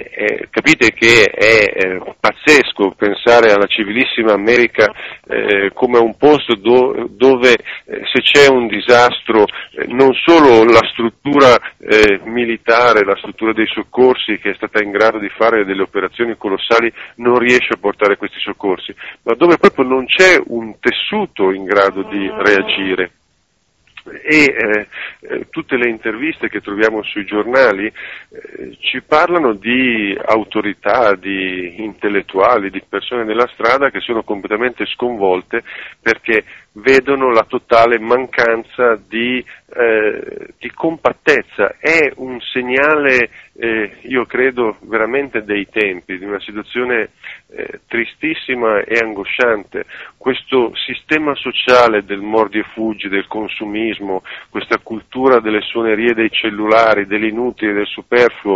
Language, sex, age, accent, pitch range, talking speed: Italian, male, 50-69, native, 105-130 Hz, 125 wpm